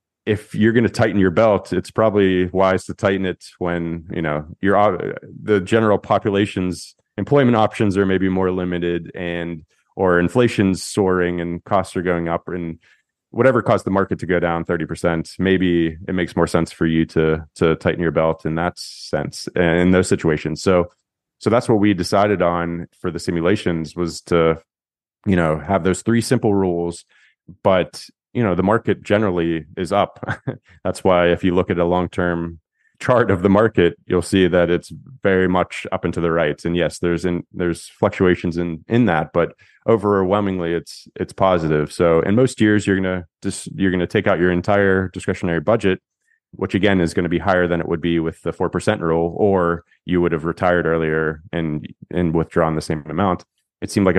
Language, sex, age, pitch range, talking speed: English, male, 30-49, 85-100 Hz, 190 wpm